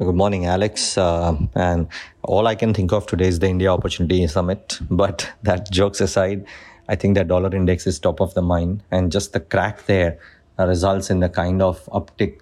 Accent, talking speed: Indian, 205 wpm